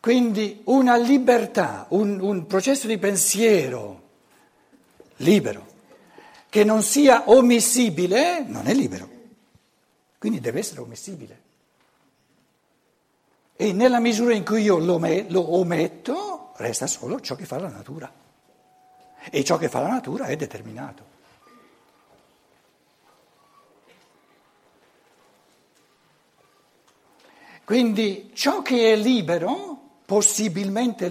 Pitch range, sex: 180-265 Hz, male